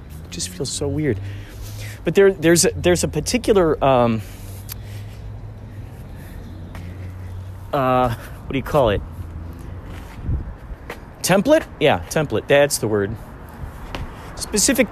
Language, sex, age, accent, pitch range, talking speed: English, male, 30-49, American, 95-150 Hz, 100 wpm